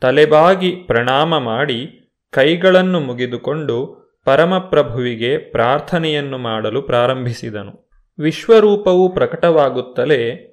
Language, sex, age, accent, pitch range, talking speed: Kannada, male, 30-49, native, 125-170 Hz, 65 wpm